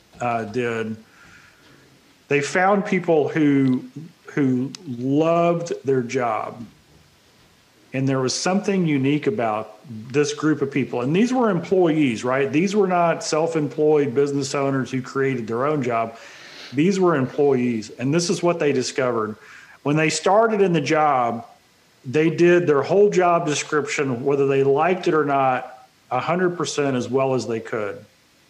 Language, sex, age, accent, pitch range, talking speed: English, male, 40-59, American, 130-170 Hz, 145 wpm